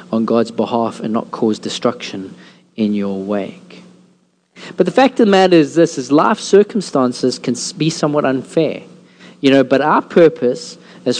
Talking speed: 165 wpm